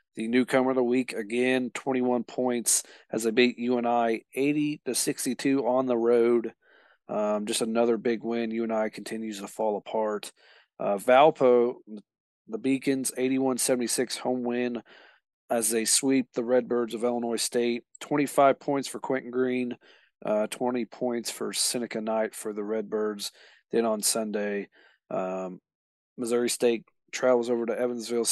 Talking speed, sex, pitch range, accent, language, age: 150 wpm, male, 110-125 Hz, American, English, 40-59